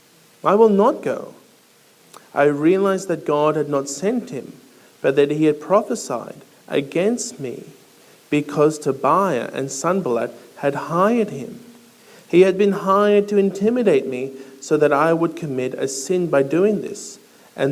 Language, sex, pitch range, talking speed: English, male, 135-200 Hz, 150 wpm